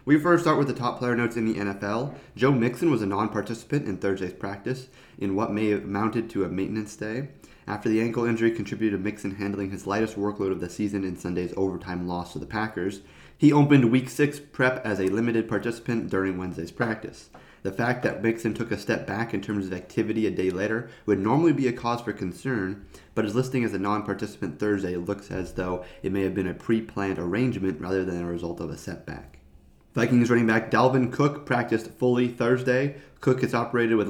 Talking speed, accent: 210 wpm, American